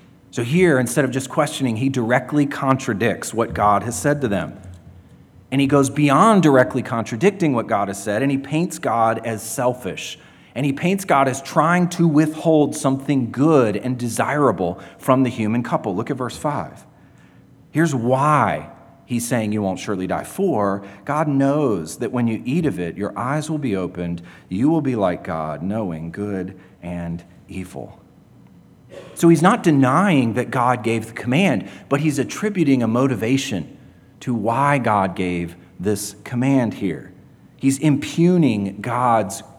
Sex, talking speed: male, 160 wpm